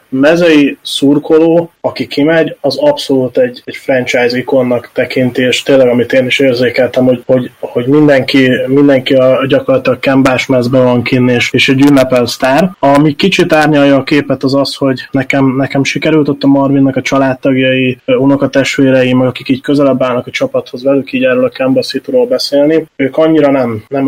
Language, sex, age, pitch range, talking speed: Hungarian, male, 20-39, 130-140 Hz, 165 wpm